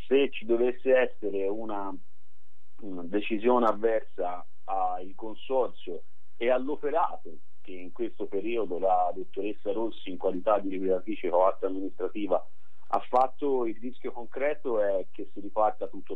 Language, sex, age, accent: Italian, male, 40-59, native